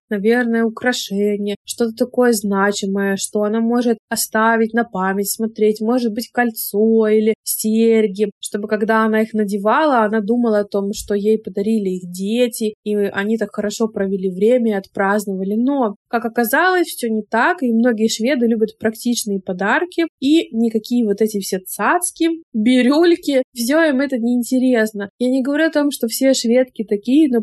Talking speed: 160 wpm